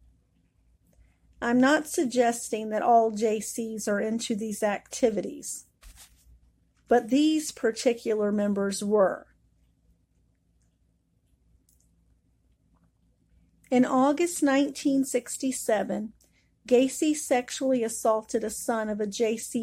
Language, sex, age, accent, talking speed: English, female, 40-59, American, 80 wpm